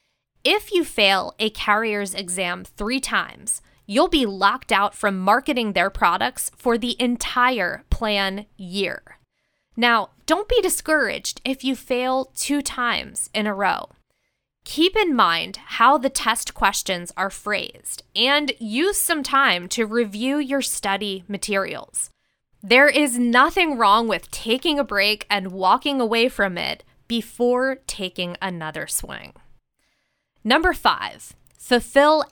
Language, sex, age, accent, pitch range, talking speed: English, female, 20-39, American, 200-270 Hz, 130 wpm